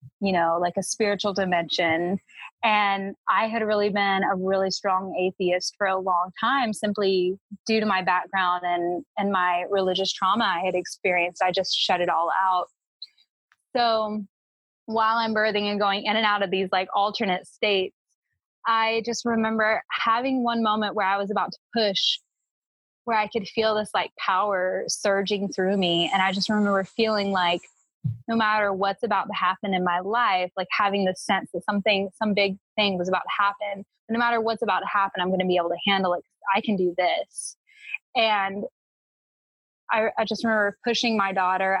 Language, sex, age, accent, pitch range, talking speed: English, female, 20-39, American, 185-215 Hz, 185 wpm